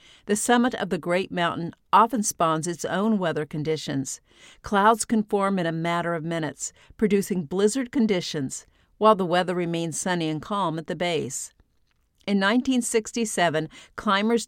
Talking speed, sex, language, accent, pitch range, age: 150 wpm, female, English, American, 160-205 Hz, 50-69